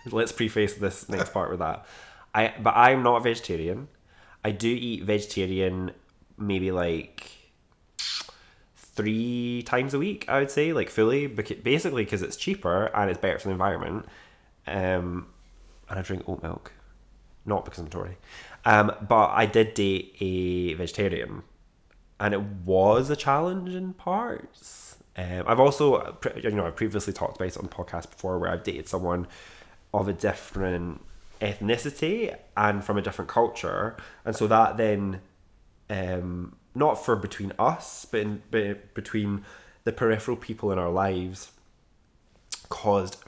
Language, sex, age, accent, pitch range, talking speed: English, male, 20-39, British, 90-110 Hz, 150 wpm